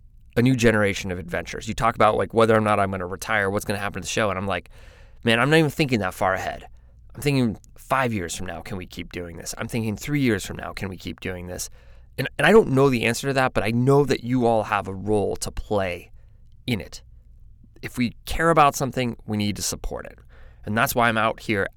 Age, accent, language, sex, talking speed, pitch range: 20-39, American, English, male, 260 wpm, 100-125 Hz